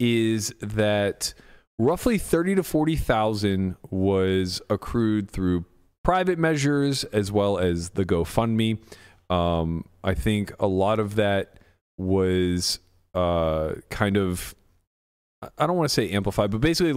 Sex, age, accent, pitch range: male, 30-49, American, 90-115 Hz